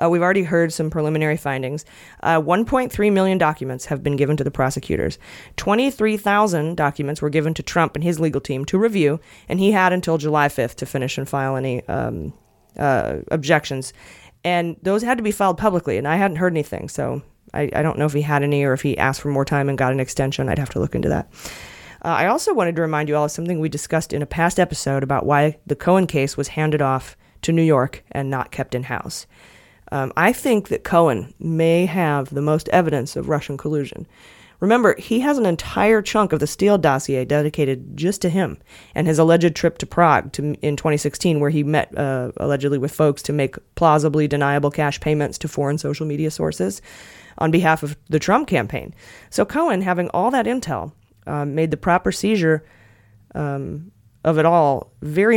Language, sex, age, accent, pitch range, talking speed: English, female, 30-49, American, 140-175 Hz, 205 wpm